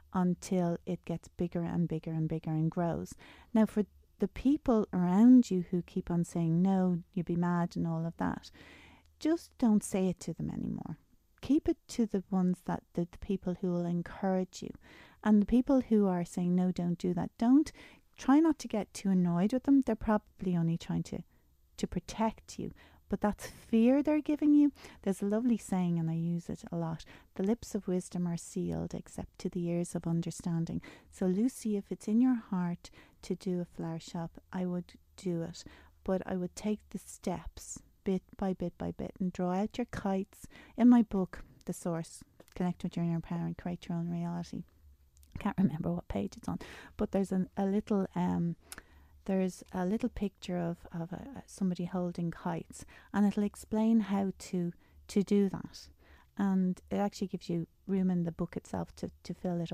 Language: English